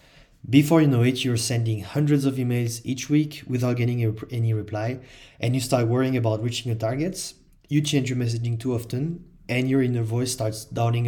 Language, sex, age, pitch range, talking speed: English, male, 30-49, 110-140 Hz, 190 wpm